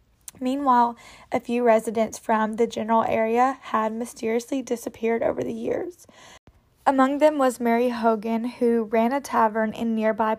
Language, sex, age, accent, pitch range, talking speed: English, female, 10-29, American, 220-245 Hz, 145 wpm